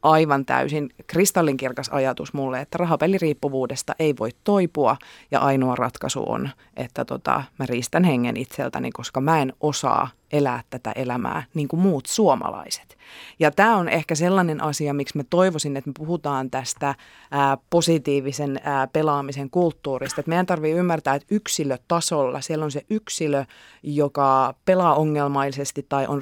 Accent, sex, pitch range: native, female, 135-170 Hz